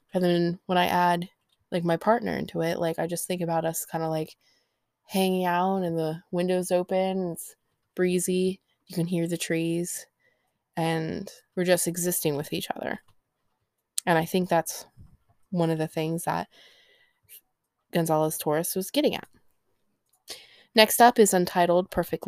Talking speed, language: 155 wpm, English